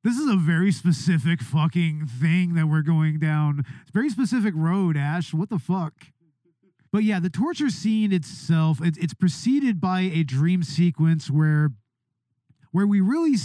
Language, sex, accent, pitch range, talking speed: English, male, American, 150-195 Hz, 160 wpm